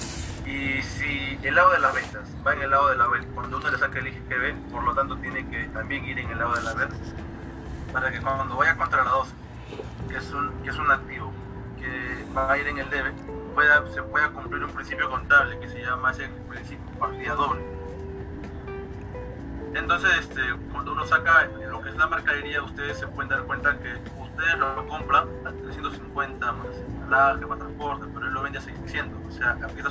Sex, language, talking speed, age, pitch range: male, Spanish, 205 wpm, 30-49, 80-125 Hz